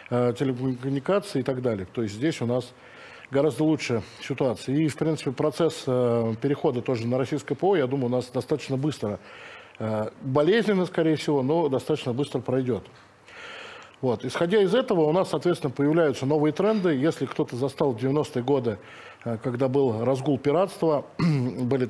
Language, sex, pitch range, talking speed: Russian, male, 125-155 Hz, 155 wpm